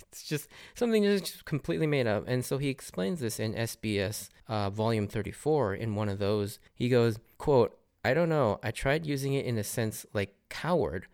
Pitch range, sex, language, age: 105-140 Hz, male, English, 20-39